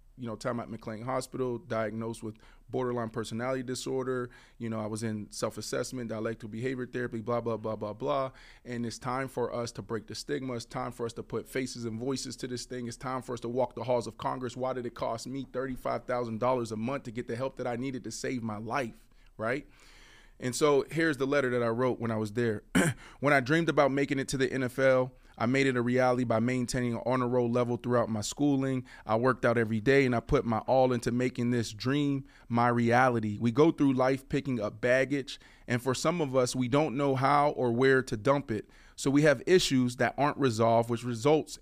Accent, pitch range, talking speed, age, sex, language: American, 115-135 Hz, 225 wpm, 20-39, male, English